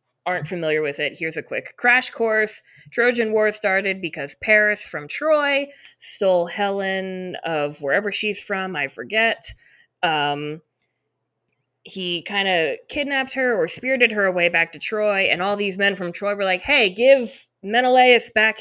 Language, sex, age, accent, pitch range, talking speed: English, female, 20-39, American, 155-215 Hz, 160 wpm